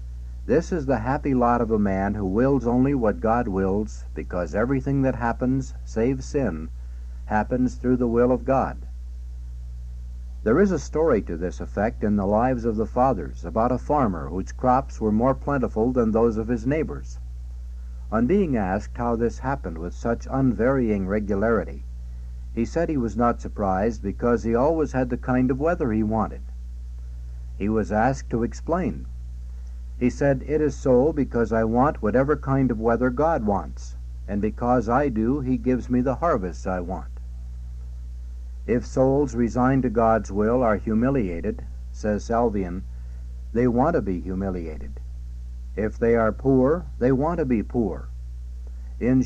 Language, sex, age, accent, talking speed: English, male, 60-79, American, 160 wpm